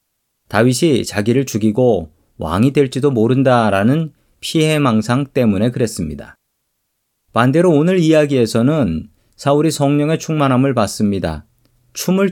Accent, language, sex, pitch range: native, Korean, male, 100-140 Hz